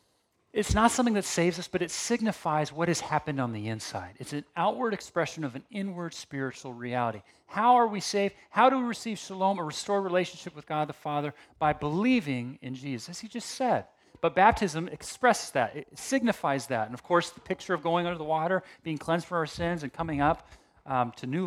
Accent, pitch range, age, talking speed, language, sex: American, 135-180 Hz, 40-59, 210 wpm, English, male